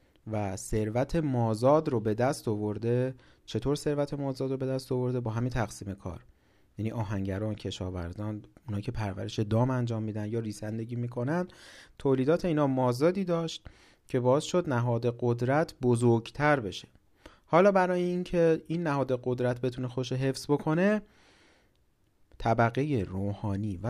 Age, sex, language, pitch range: 40-59, male, Persian, 105-135 Hz